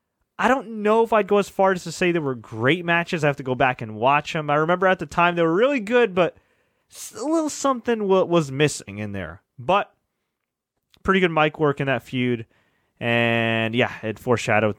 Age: 30-49